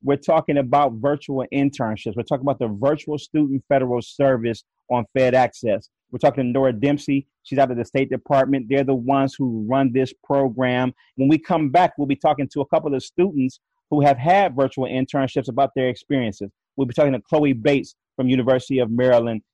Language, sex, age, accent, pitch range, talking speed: English, male, 30-49, American, 125-145 Hz, 195 wpm